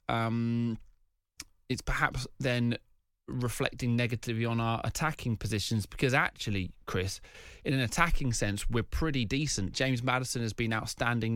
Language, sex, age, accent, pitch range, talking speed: English, male, 20-39, British, 115-140 Hz, 130 wpm